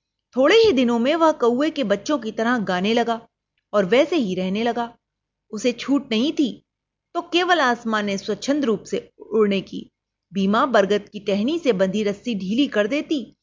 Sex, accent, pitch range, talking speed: female, native, 210-290 Hz, 180 wpm